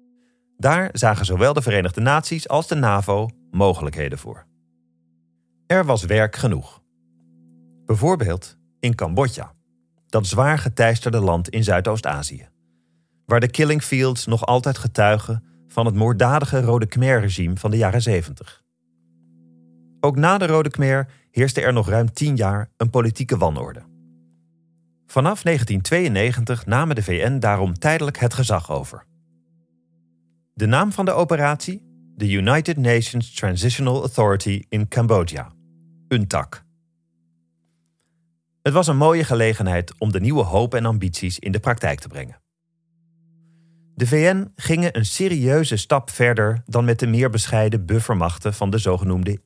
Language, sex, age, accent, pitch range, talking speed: Dutch, male, 40-59, Dutch, 85-135 Hz, 130 wpm